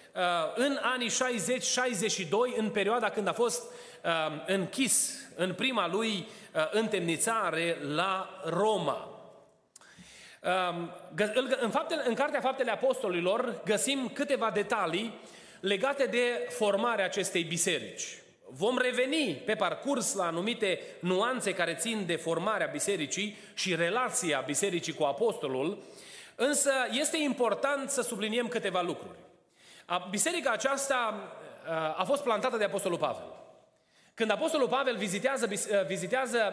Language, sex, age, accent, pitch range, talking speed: Romanian, male, 30-49, native, 195-275 Hz, 105 wpm